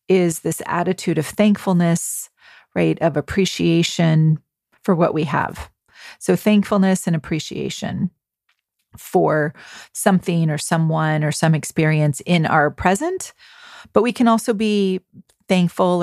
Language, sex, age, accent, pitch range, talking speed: English, female, 30-49, American, 160-200 Hz, 120 wpm